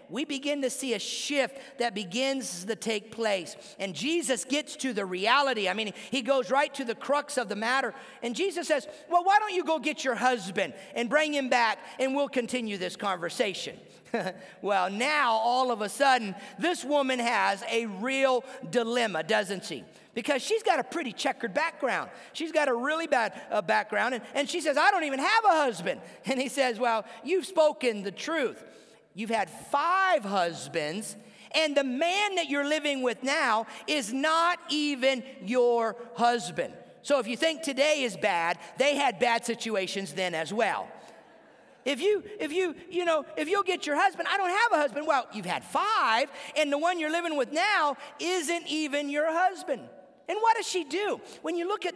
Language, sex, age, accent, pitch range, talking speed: English, male, 50-69, American, 230-315 Hz, 190 wpm